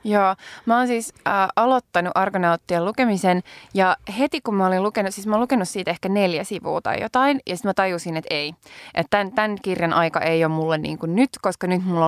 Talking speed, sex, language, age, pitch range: 210 wpm, female, Finnish, 20-39, 165-215 Hz